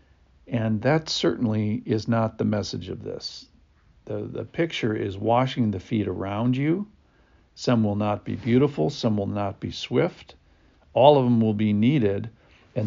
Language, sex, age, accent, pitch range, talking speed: English, male, 60-79, American, 95-125 Hz, 165 wpm